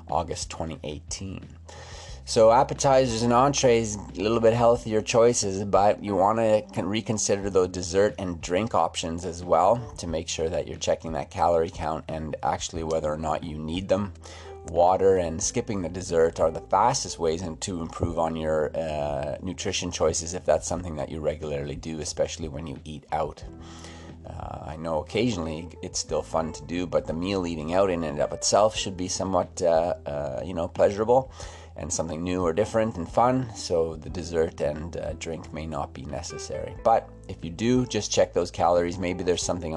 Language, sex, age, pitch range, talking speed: English, male, 30-49, 80-100 Hz, 185 wpm